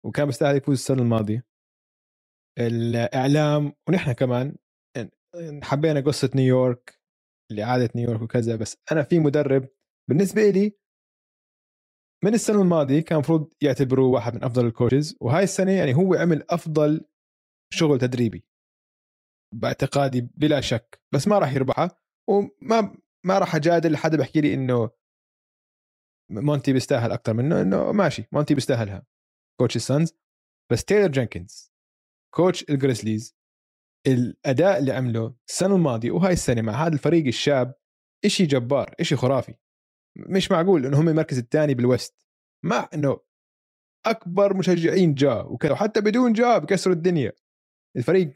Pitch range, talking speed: 125-170 Hz, 125 wpm